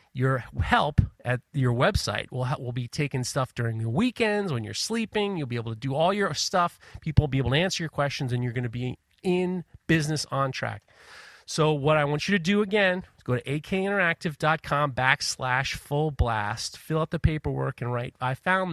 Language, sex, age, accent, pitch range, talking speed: English, male, 30-49, American, 120-165 Hz, 205 wpm